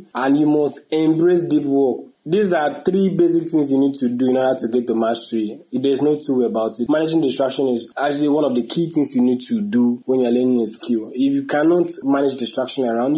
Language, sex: English, male